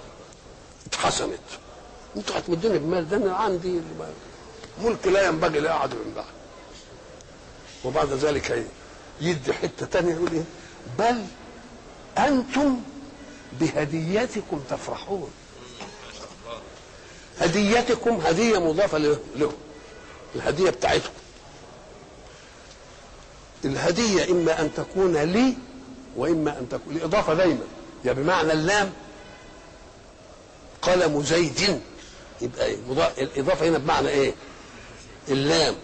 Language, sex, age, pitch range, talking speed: Arabic, male, 60-79, 150-195 Hz, 90 wpm